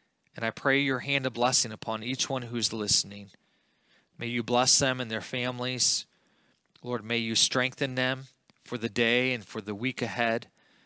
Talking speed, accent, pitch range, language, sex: 175 wpm, American, 115-135 Hz, English, male